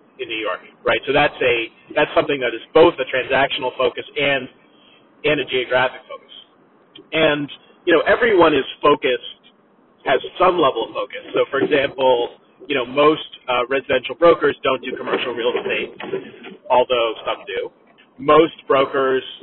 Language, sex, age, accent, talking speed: English, male, 30-49, American, 155 wpm